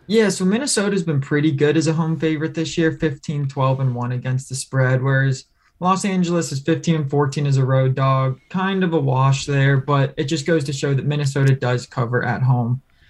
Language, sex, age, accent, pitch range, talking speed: English, male, 20-39, American, 135-160 Hz, 220 wpm